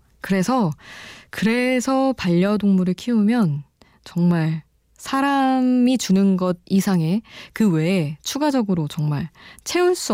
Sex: female